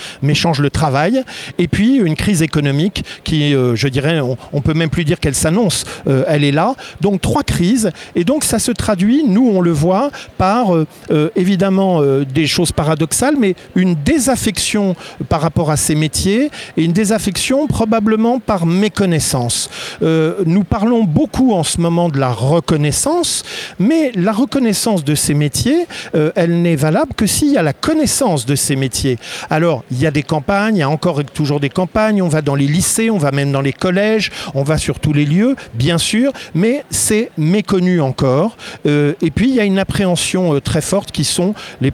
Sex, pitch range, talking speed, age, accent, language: male, 155-215 Hz, 195 wpm, 50-69, French, French